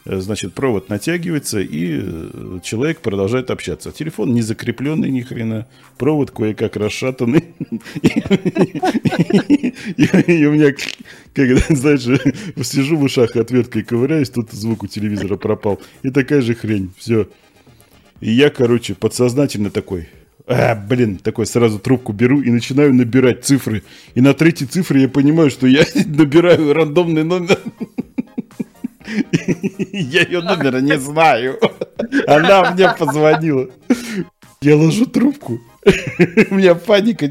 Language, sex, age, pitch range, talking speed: Russian, male, 40-59, 110-165 Hz, 115 wpm